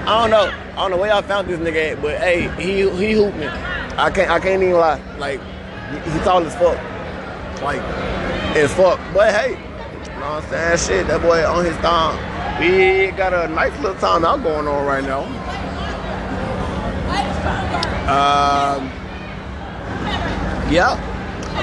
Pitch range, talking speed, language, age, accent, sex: 140-205 Hz, 160 wpm, English, 20-39, American, male